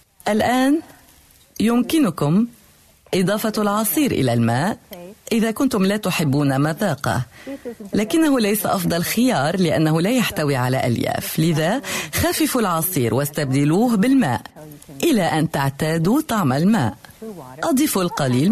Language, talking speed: Arabic, 105 wpm